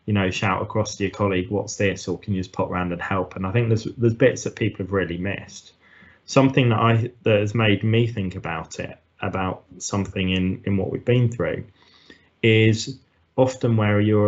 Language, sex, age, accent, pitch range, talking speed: English, male, 20-39, British, 90-105 Hz, 210 wpm